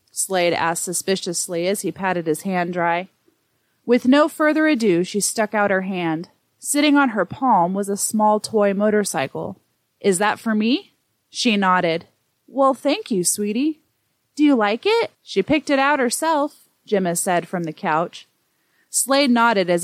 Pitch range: 180-235 Hz